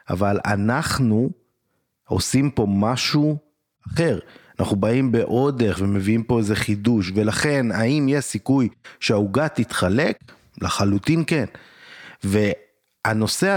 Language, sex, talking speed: Hebrew, male, 95 wpm